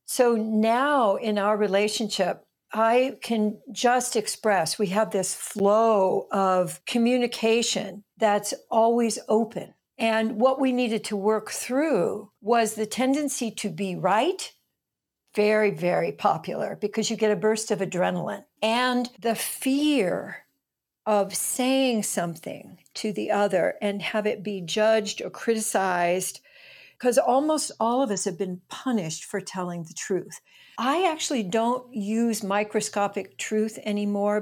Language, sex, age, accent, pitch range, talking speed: English, female, 60-79, American, 200-240 Hz, 130 wpm